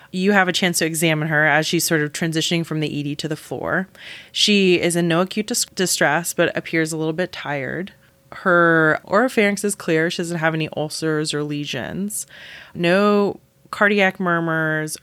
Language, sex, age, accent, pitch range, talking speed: English, female, 20-39, American, 160-190 Hz, 180 wpm